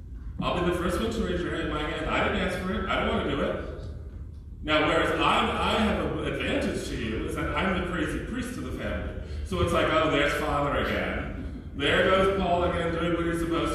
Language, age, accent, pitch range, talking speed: English, 40-59, American, 145-225 Hz, 235 wpm